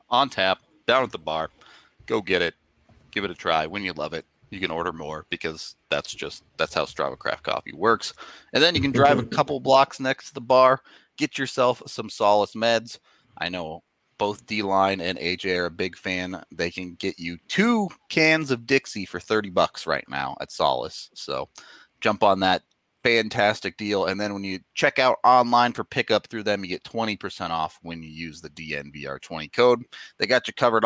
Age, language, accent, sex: 30-49, English, American, male